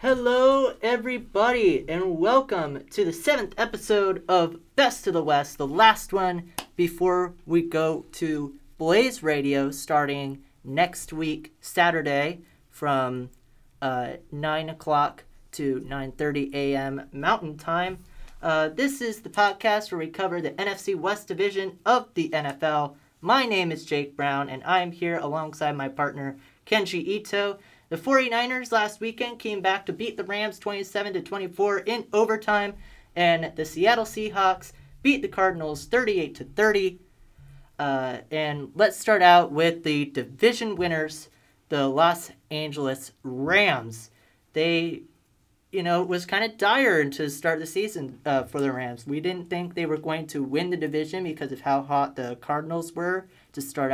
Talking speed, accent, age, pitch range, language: 145 wpm, American, 30-49, 145-200 Hz, English